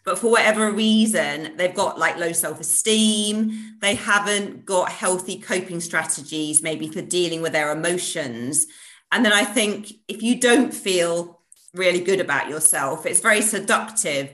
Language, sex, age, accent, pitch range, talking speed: English, female, 30-49, British, 170-215 Hz, 155 wpm